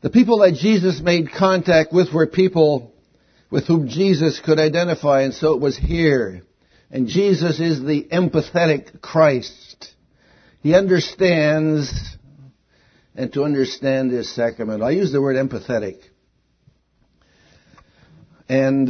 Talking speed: 120 wpm